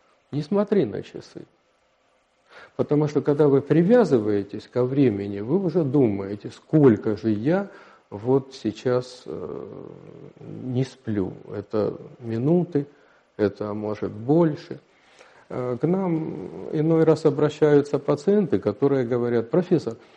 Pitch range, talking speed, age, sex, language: 115-165 Hz, 110 wpm, 50-69, male, Russian